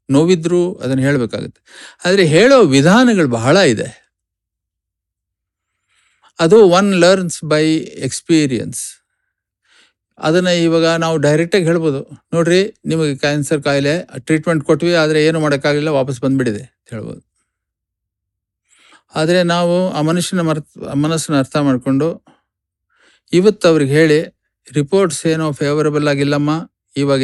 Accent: native